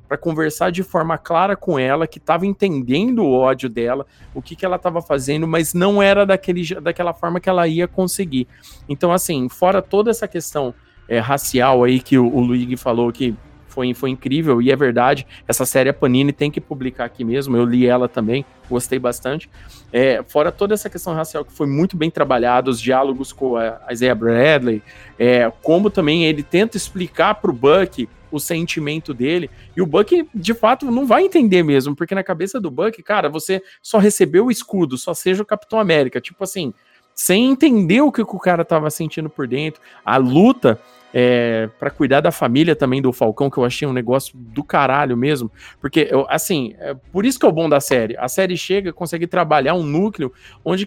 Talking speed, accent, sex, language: 200 wpm, Brazilian, male, Portuguese